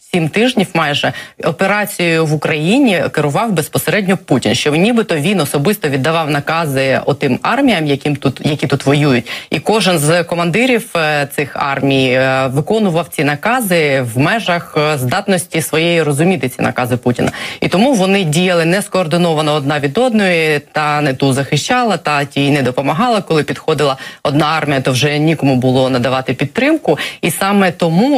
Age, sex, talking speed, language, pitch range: 20-39, female, 145 wpm, Ukrainian, 140-180 Hz